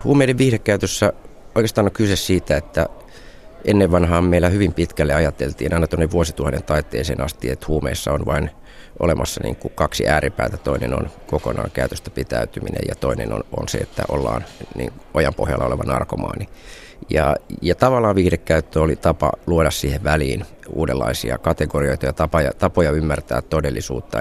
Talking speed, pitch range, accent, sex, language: 145 wpm, 75-90 Hz, native, male, Finnish